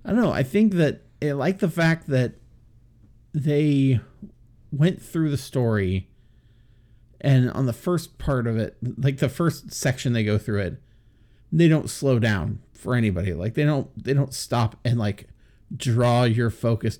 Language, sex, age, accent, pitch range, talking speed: English, male, 40-59, American, 110-140 Hz, 170 wpm